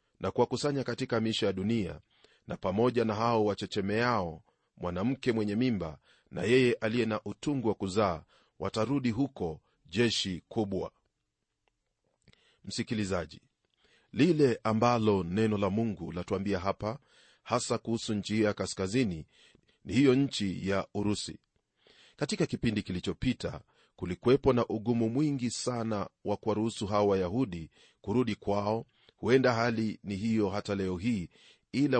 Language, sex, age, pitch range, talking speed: Swahili, male, 40-59, 100-120 Hz, 120 wpm